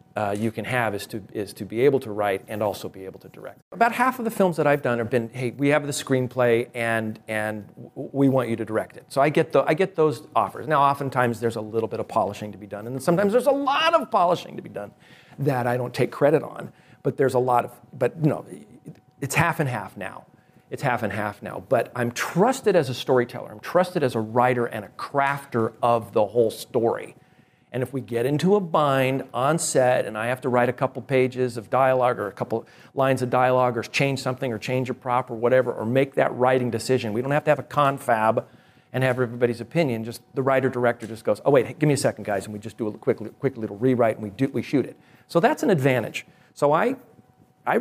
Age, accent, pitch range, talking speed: 40-59, American, 115-145 Hz, 250 wpm